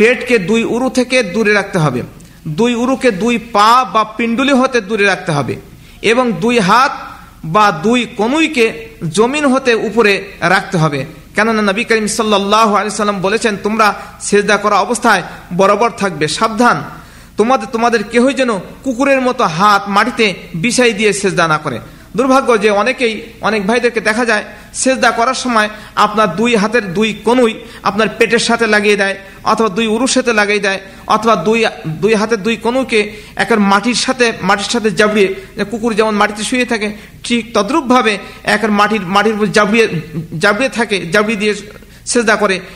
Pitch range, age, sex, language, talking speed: 200-235 Hz, 50-69, male, Bengali, 100 wpm